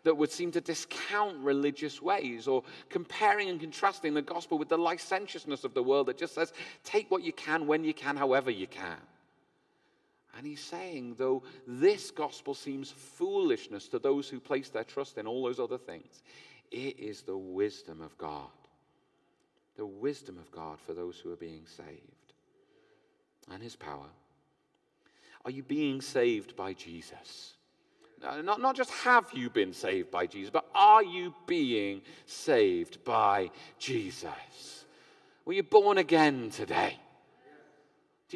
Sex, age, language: male, 40-59, English